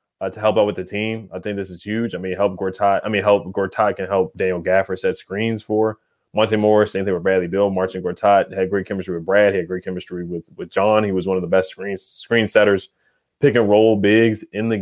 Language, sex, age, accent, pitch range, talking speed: English, male, 20-39, American, 95-110 Hz, 255 wpm